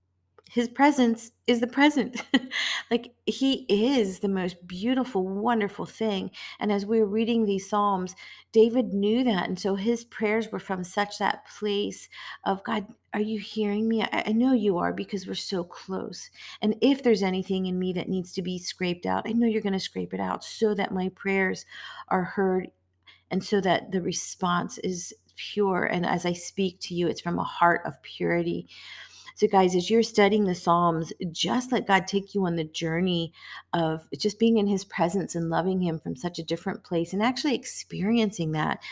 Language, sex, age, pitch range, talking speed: English, female, 40-59, 165-215 Hz, 190 wpm